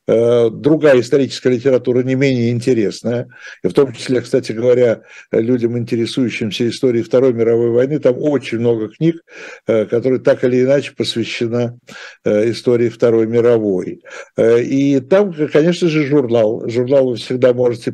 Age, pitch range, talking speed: 60-79, 115-140 Hz, 125 wpm